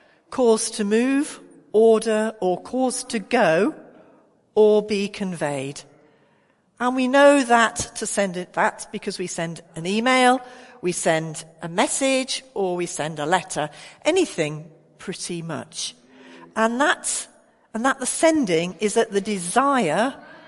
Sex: female